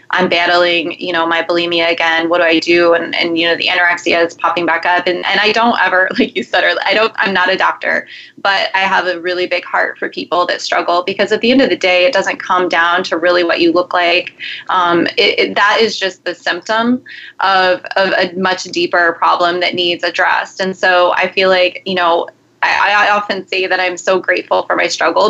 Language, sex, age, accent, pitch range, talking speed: English, female, 20-39, American, 175-205 Hz, 230 wpm